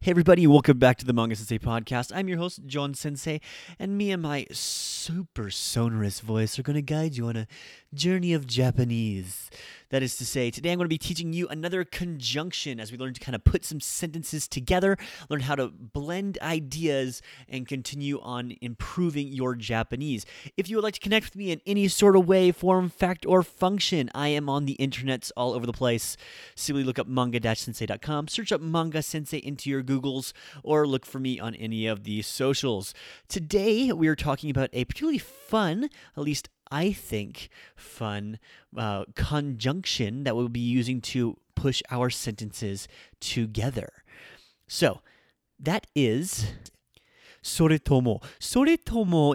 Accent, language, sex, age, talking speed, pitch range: American, English, male, 30-49, 170 wpm, 120-165 Hz